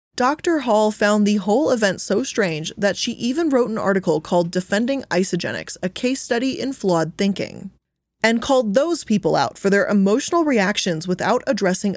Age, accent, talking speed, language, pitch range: 20-39, American, 170 wpm, English, 175-225 Hz